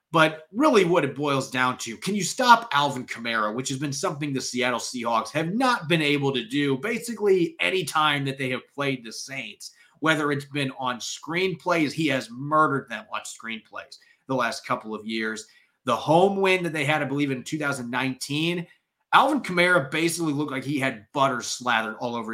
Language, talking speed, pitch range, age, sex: English, 190 wpm, 125-160 Hz, 30-49, male